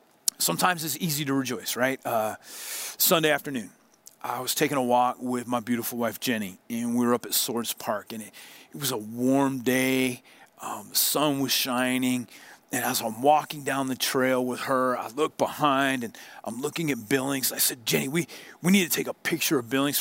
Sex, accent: male, American